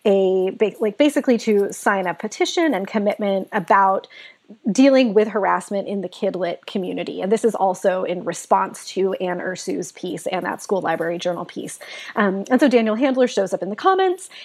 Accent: American